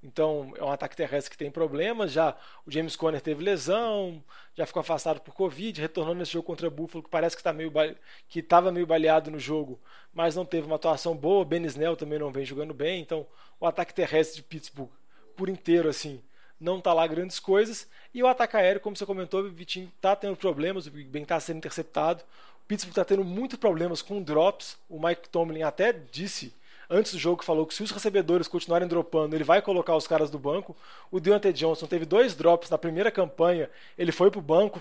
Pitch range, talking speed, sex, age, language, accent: 155-185 Hz, 210 wpm, male, 20-39, Portuguese, Brazilian